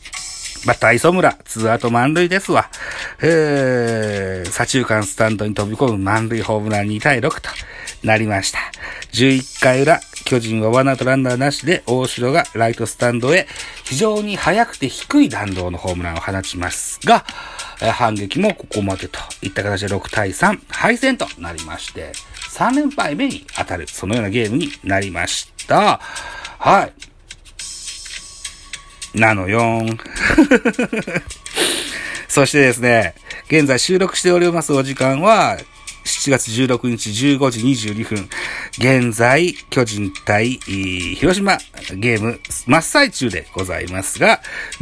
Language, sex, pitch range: Japanese, male, 105-145 Hz